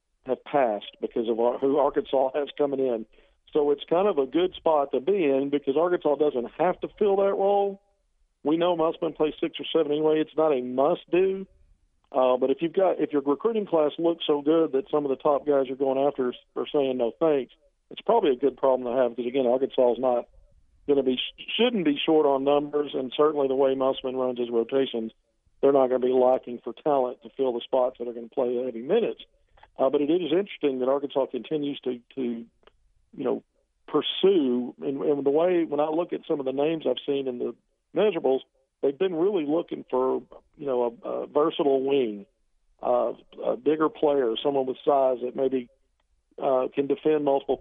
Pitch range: 130-155 Hz